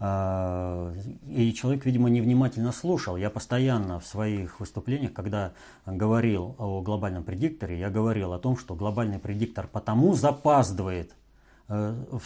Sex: male